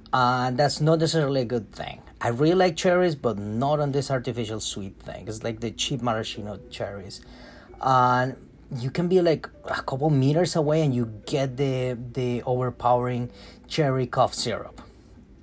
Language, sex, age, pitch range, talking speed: English, male, 30-49, 110-150 Hz, 175 wpm